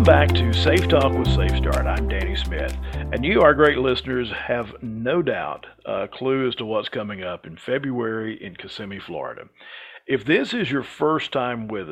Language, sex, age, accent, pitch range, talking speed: English, male, 50-69, American, 110-140 Hz, 185 wpm